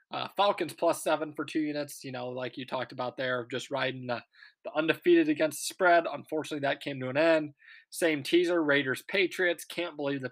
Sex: male